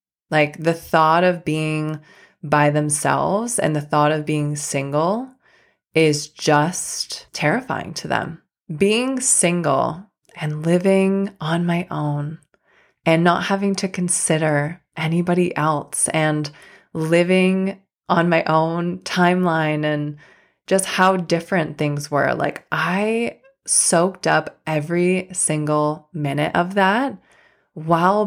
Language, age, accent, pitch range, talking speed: English, 20-39, American, 150-185 Hz, 115 wpm